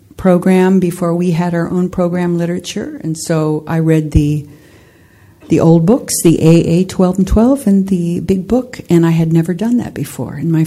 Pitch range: 150-175 Hz